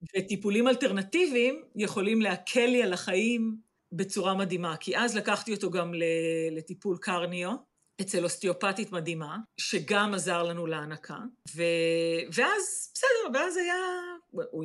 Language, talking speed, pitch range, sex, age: Hebrew, 120 wpm, 170-230 Hz, female, 50-69